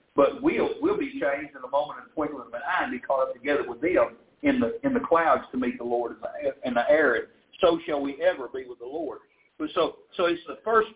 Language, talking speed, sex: English, 235 wpm, male